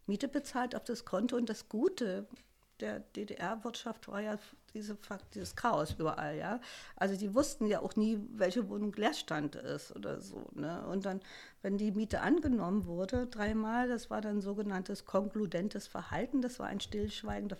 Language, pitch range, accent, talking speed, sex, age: German, 185-240 Hz, German, 165 wpm, female, 60-79